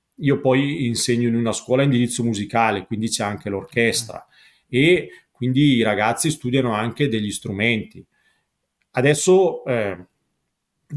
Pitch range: 110-145 Hz